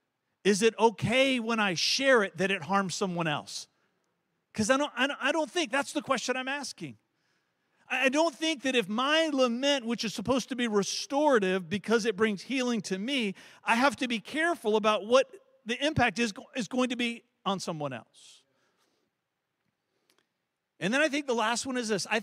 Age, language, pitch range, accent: 50-69, English, 200-265 Hz, American